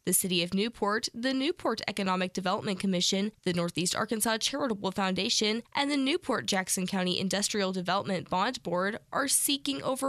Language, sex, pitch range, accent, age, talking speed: English, female, 185-240 Hz, American, 10-29, 150 wpm